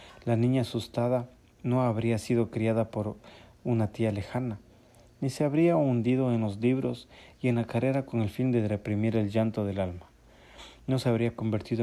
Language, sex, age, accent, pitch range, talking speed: Spanish, male, 40-59, Mexican, 105-125 Hz, 180 wpm